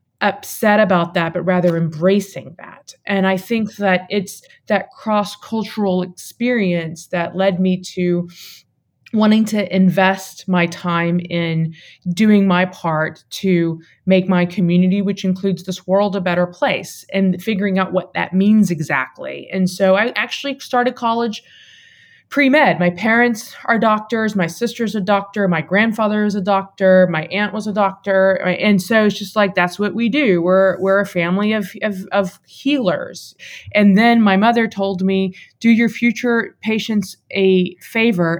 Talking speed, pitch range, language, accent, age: 155 wpm, 185-230 Hz, English, American, 20-39